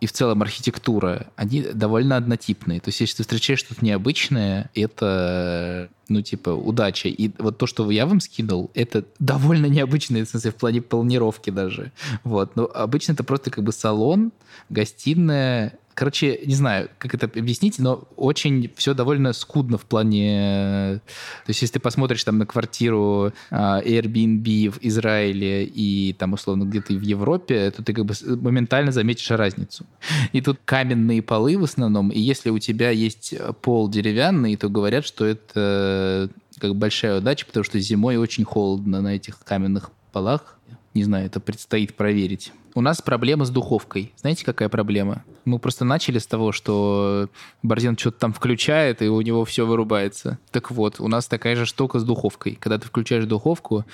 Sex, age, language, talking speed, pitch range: male, 20-39, Russian, 170 wpm, 105-125 Hz